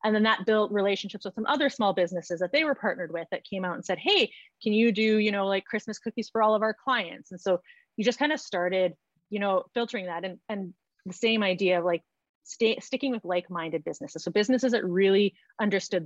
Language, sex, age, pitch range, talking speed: English, female, 30-49, 175-215 Hz, 235 wpm